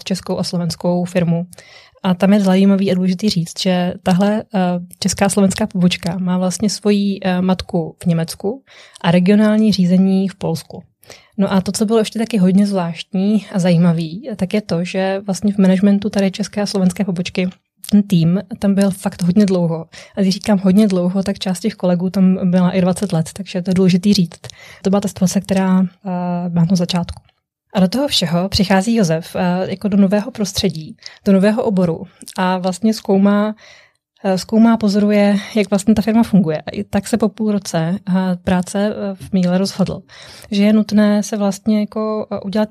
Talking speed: 185 wpm